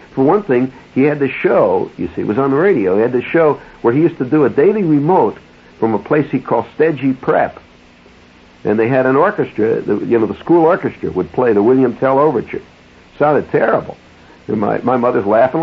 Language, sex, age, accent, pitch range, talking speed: English, male, 60-79, American, 90-140 Hz, 225 wpm